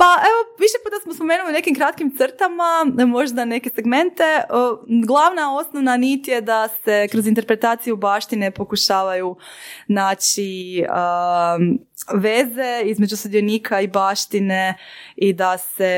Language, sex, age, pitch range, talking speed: Croatian, female, 20-39, 185-255 Hz, 120 wpm